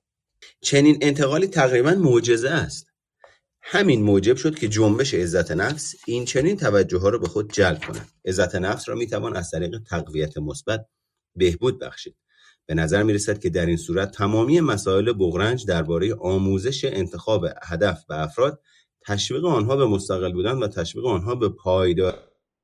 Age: 30-49